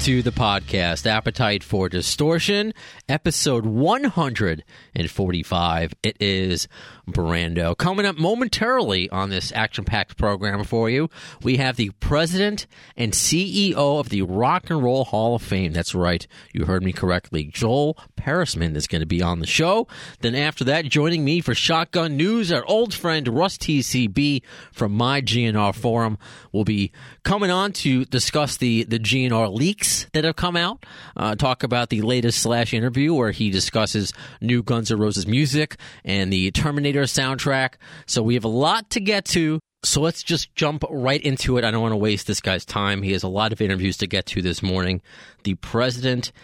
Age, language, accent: 40-59, English, American